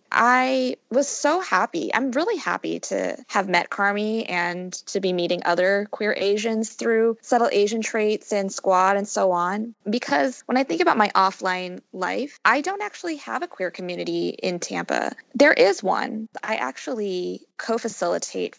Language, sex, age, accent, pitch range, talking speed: English, female, 20-39, American, 185-240 Hz, 160 wpm